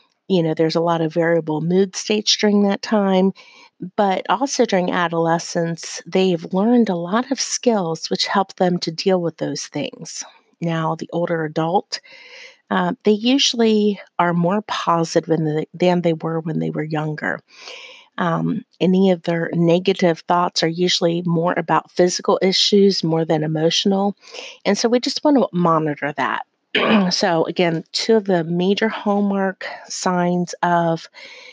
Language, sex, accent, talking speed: English, female, American, 155 wpm